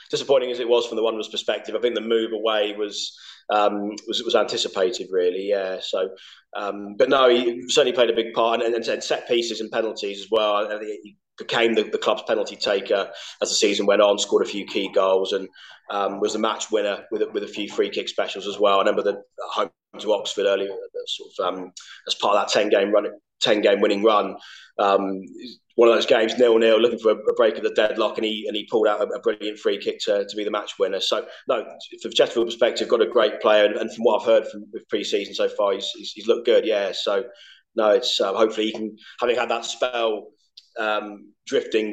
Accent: British